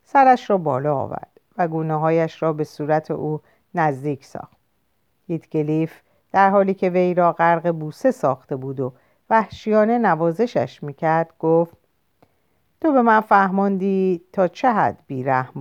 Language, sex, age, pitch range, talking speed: Persian, female, 50-69, 155-195 Hz, 140 wpm